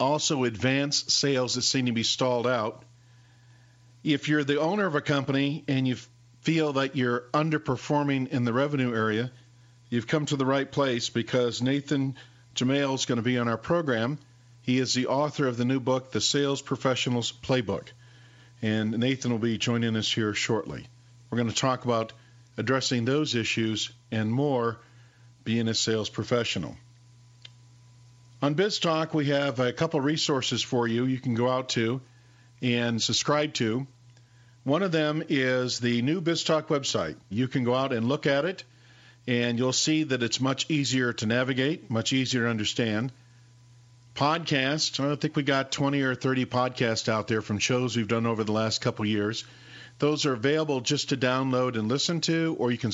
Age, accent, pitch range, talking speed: 50-69, American, 120-140 Hz, 175 wpm